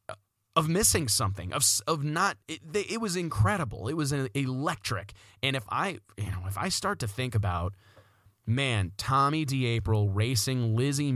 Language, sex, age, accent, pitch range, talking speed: English, male, 30-49, American, 105-135 Hz, 160 wpm